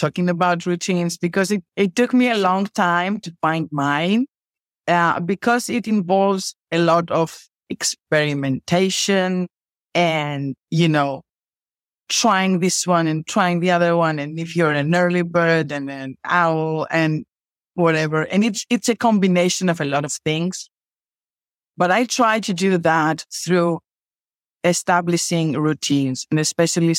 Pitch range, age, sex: 150-185 Hz, 50-69, female